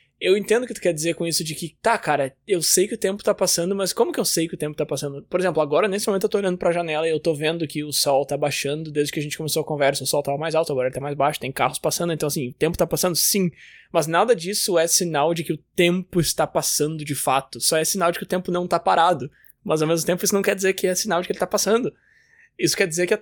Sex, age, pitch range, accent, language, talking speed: male, 20-39, 155-205 Hz, Brazilian, Portuguese, 310 wpm